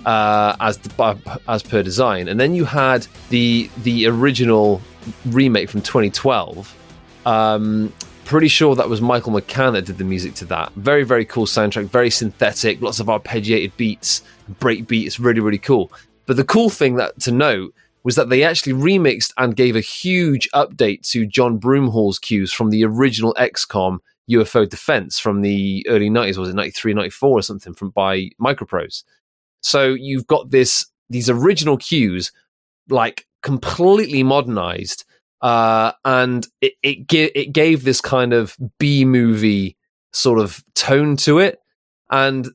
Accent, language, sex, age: British, English, male, 30-49